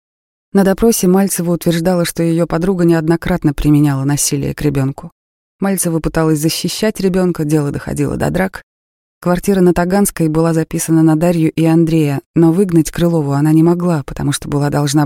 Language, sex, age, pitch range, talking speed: Russian, female, 30-49, 145-175 Hz, 155 wpm